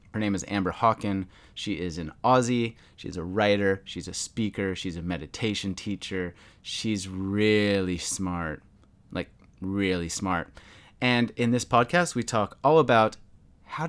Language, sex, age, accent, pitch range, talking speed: English, male, 30-49, American, 95-115 Hz, 145 wpm